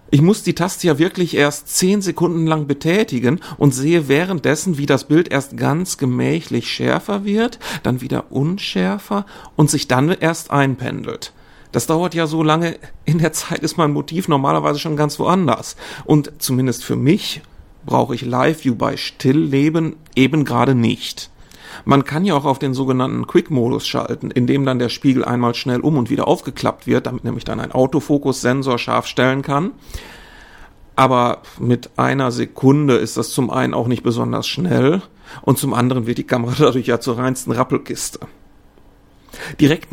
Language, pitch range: German, 125-160 Hz